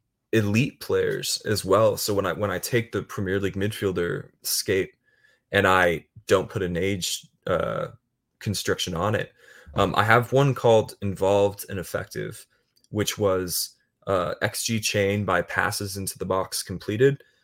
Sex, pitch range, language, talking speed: male, 95-110 Hz, English, 150 wpm